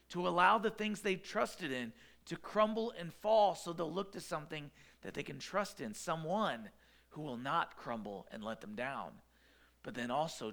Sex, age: male, 40-59